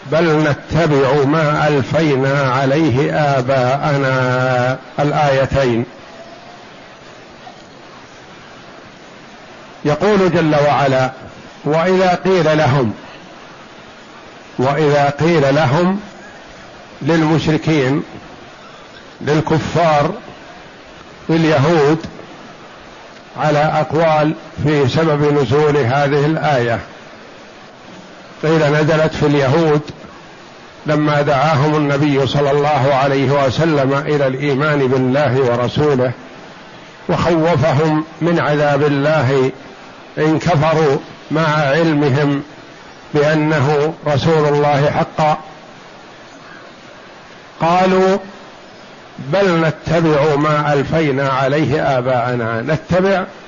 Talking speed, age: 70 wpm, 50-69